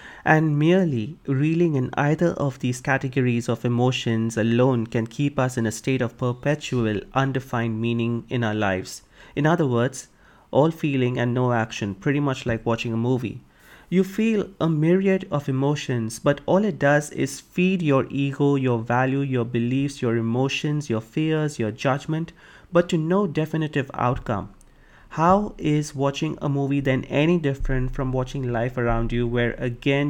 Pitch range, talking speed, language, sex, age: 120-145 Hz, 165 wpm, English, male, 30-49